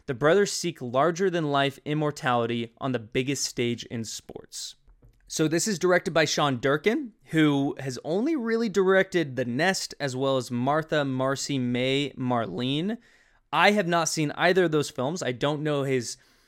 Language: English